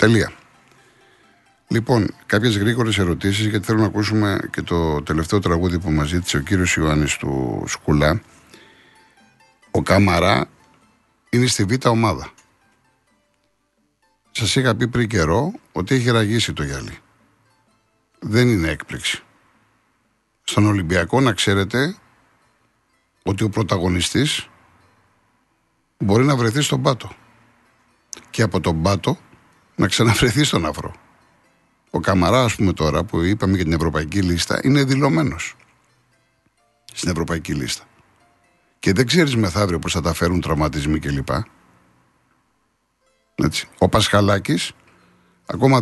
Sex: male